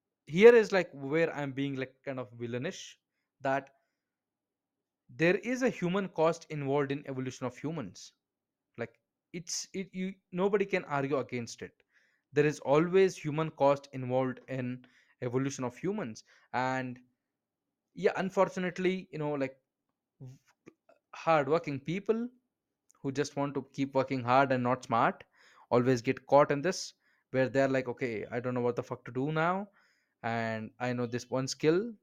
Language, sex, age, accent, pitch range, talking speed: English, male, 20-39, Indian, 125-165 Hz, 155 wpm